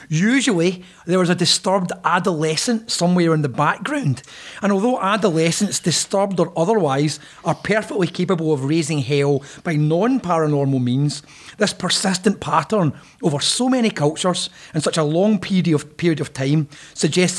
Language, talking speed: English, 145 wpm